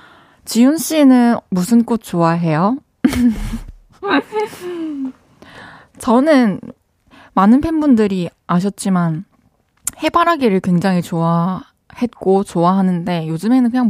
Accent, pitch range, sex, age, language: native, 185-260 Hz, female, 20-39, Korean